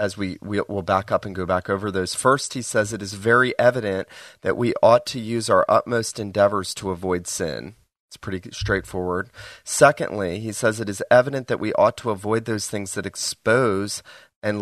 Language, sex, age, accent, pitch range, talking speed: English, male, 30-49, American, 100-115 Hz, 200 wpm